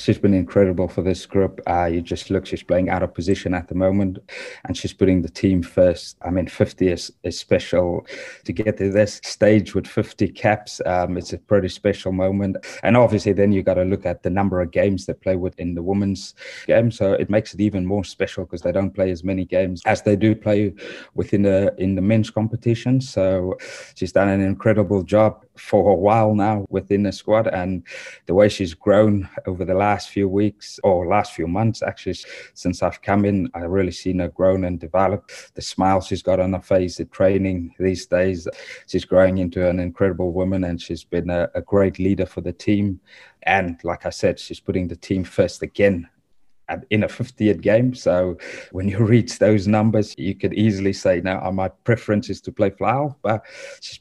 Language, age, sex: English, 20-39, male